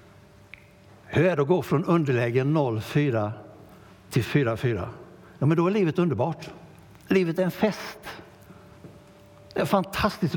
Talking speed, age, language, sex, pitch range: 125 wpm, 60-79, Swedish, male, 110-155 Hz